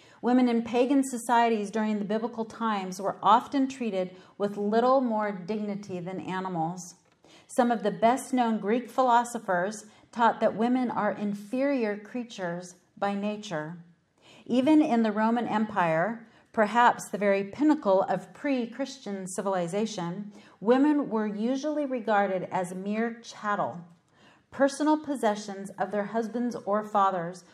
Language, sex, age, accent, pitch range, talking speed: English, female, 40-59, American, 190-230 Hz, 125 wpm